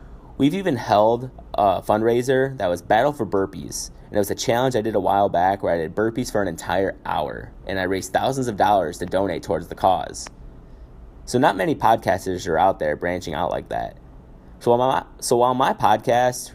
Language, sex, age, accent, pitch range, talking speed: English, male, 20-39, American, 85-110 Hz, 205 wpm